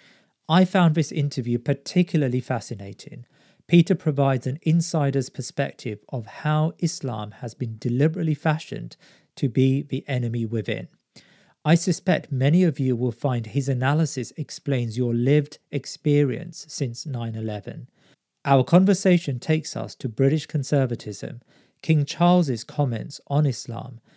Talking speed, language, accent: 125 wpm, English, British